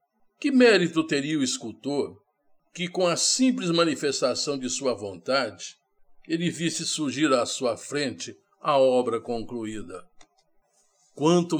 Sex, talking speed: male, 120 wpm